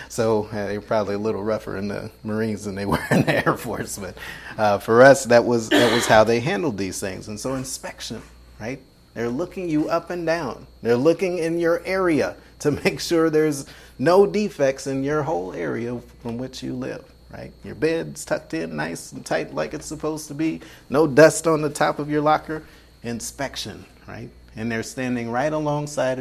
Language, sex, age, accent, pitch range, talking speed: English, male, 30-49, American, 100-155 Hz, 195 wpm